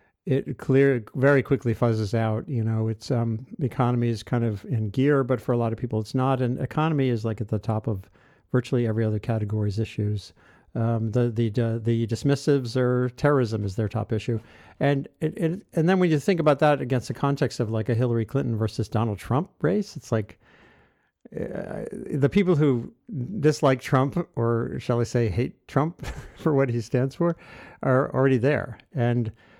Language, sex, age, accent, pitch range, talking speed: English, male, 50-69, American, 115-140 Hz, 185 wpm